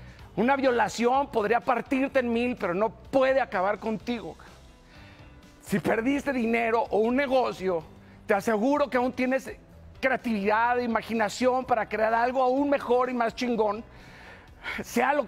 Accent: Mexican